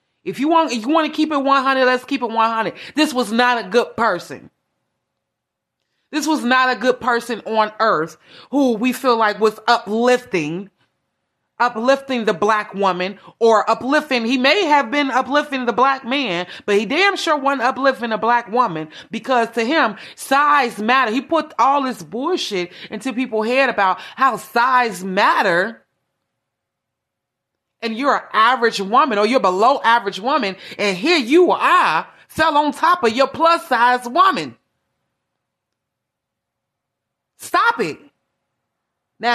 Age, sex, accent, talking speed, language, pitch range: 30-49, female, American, 155 wpm, English, 220-280 Hz